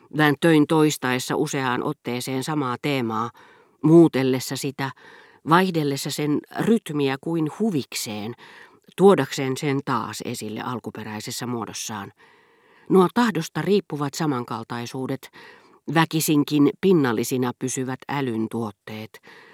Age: 40-59